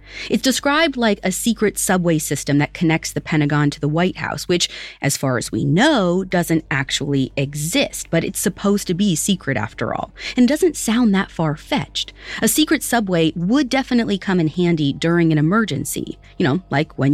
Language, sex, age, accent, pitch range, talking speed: English, female, 30-49, American, 155-240 Hz, 185 wpm